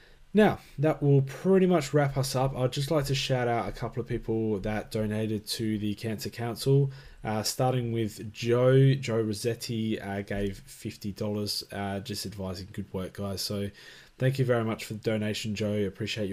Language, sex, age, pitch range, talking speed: English, male, 20-39, 100-125 Hz, 180 wpm